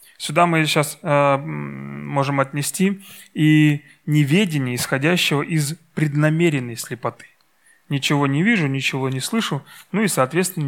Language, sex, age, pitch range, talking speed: Russian, male, 30-49, 140-180 Hz, 120 wpm